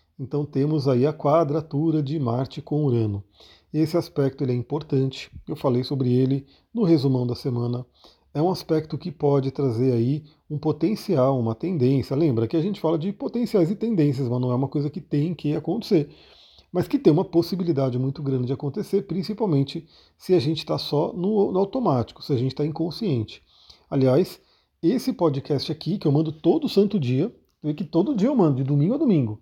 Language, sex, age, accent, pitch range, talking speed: Portuguese, male, 40-59, Brazilian, 135-170 Hz, 185 wpm